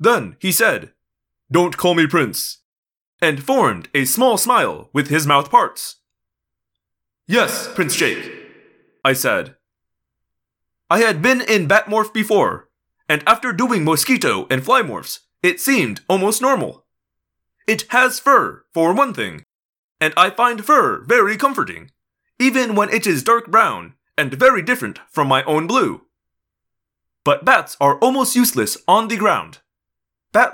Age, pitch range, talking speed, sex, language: 20-39, 155-255 Hz, 140 wpm, male, English